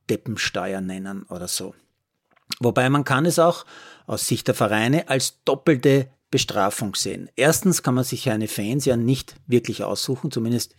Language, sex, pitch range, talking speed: German, male, 120-155 Hz, 155 wpm